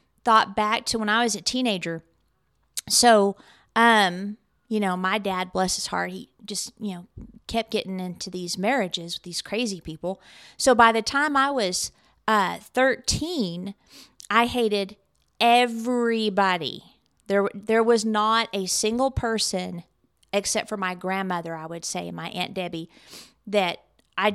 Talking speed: 150 wpm